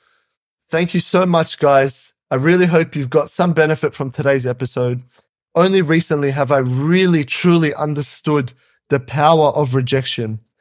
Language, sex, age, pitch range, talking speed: English, male, 20-39, 135-170 Hz, 145 wpm